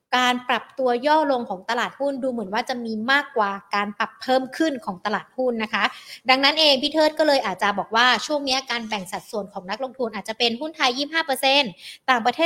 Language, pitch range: Thai, 215-270 Hz